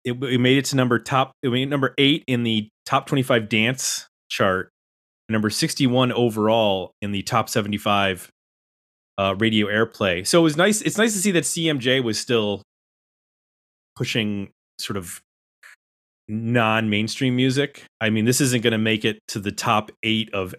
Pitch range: 105-135 Hz